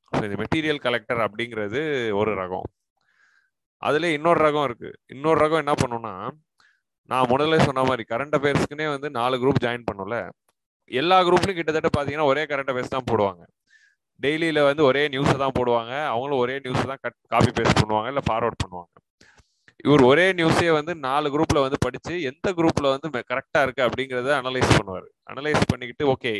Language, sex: Tamil, male